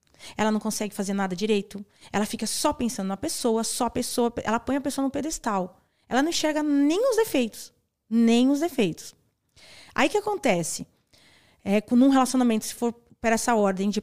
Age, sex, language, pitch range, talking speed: 20-39, female, Portuguese, 200-260 Hz, 185 wpm